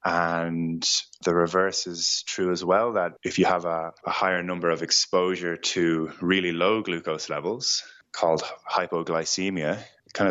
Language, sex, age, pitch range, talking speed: English, male, 20-39, 85-95 Hz, 145 wpm